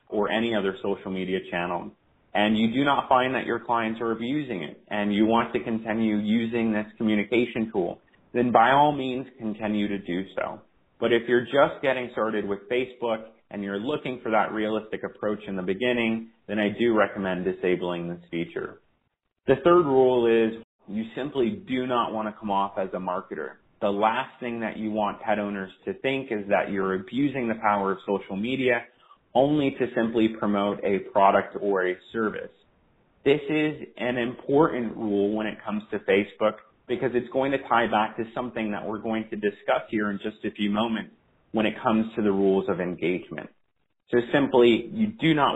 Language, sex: English, male